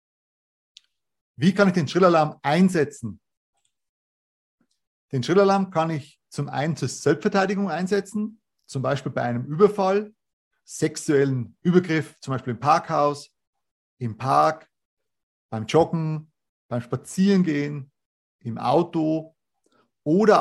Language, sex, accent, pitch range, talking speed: German, male, German, 130-185 Hz, 105 wpm